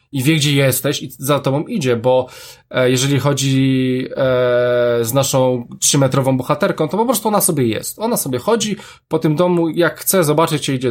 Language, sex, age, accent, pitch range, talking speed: Polish, male, 20-39, native, 140-190 Hz, 175 wpm